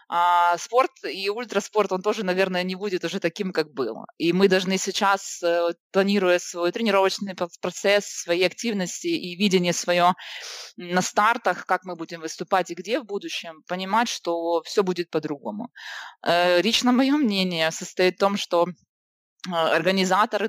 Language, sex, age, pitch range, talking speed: Ukrainian, female, 20-39, 170-205 Hz, 145 wpm